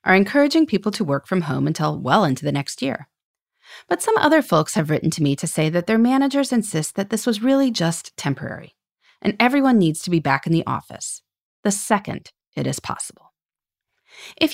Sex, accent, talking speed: female, American, 200 wpm